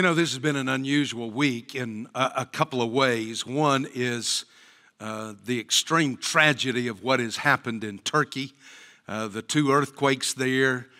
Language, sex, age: English, male, 60-79